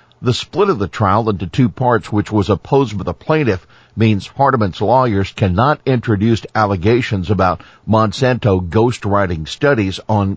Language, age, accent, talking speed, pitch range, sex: English, 50-69, American, 145 wpm, 95-120 Hz, male